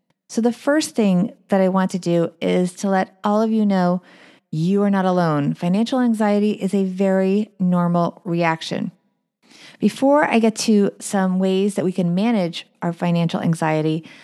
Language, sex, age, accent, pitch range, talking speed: English, female, 30-49, American, 180-225 Hz, 170 wpm